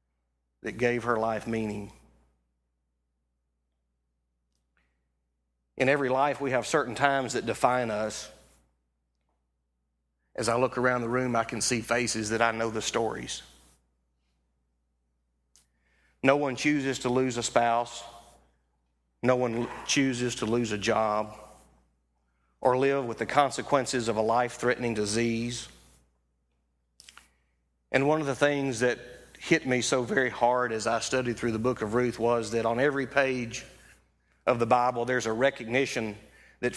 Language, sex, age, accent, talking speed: English, male, 40-59, American, 140 wpm